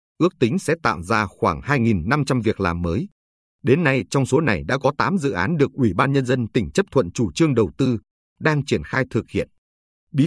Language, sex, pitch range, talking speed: Vietnamese, male, 95-140 Hz, 220 wpm